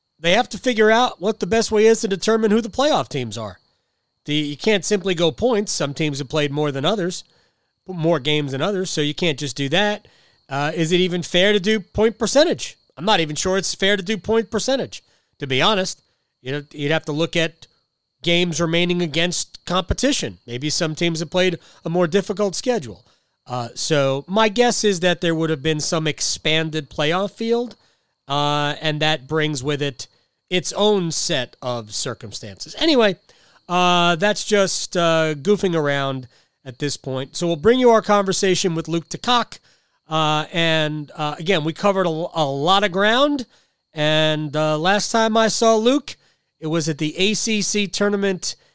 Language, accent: English, American